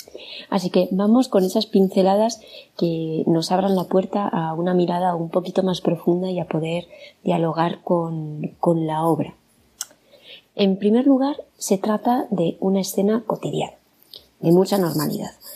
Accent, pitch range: Spanish, 170-205 Hz